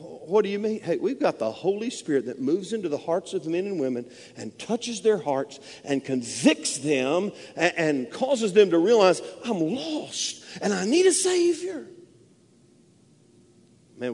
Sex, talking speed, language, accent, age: male, 165 wpm, English, American, 50-69